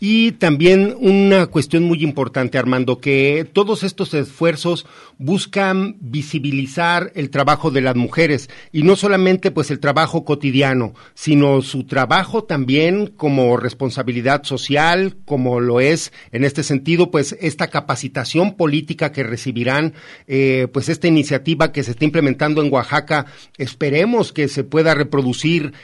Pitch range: 135-170 Hz